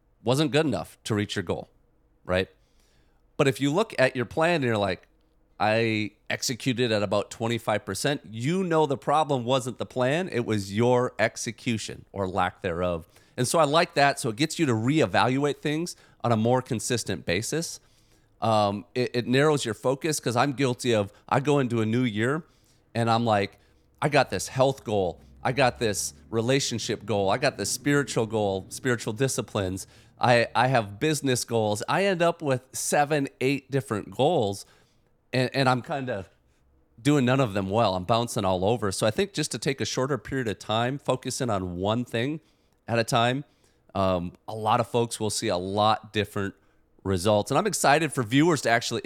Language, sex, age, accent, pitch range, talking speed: English, male, 40-59, American, 105-135 Hz, 185 wpm